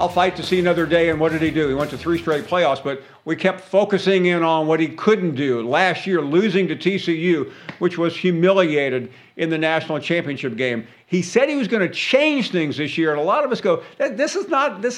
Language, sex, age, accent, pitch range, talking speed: English, male, 50-69, American, 160-215 Hz, 230 wpm